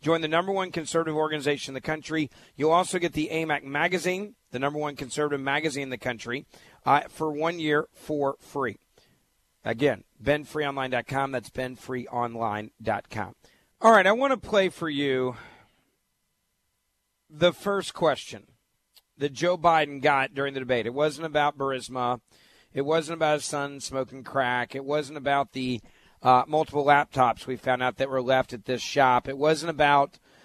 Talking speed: 160 wpm